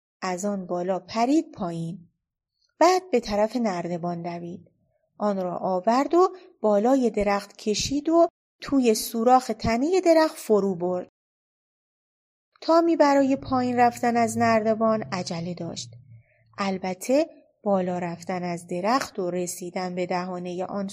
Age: 30-49